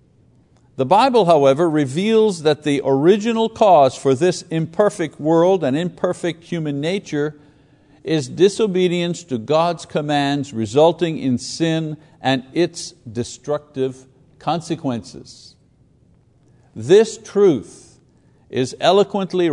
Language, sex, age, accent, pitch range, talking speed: English, male, 60-79, American, 120-165 Hz, 100 wpm